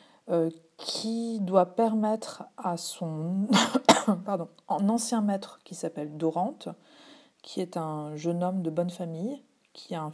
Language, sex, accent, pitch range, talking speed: French, female, French, 165-220 Hz, 140 wpm